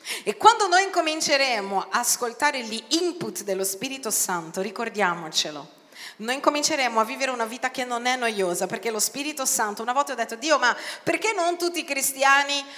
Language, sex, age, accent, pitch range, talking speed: Italian, female, 40-59, native, 205-280 Hz, 175 wpm